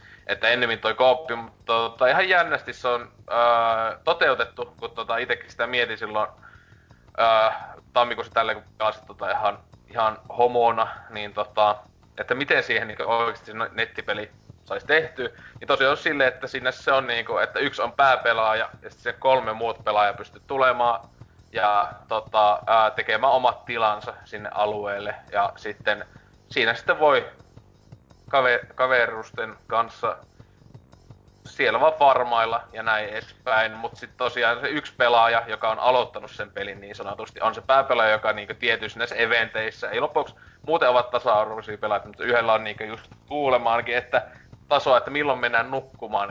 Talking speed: 150 wpm